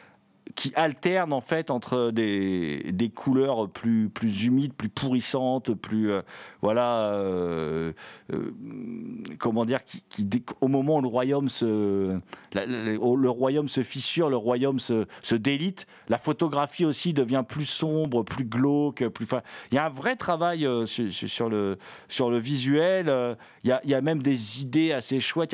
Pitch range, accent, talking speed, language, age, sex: 115-150 Hz, French, 180 wpm, French, 50-69, male